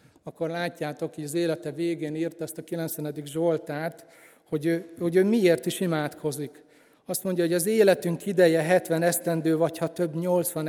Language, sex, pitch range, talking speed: Hungarian, male, 150-175 Hz, 165 wpm